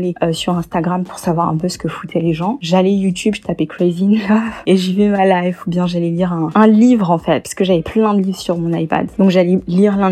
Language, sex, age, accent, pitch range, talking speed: French, female, 20-39, French, 180-220 Hz, 275 wpm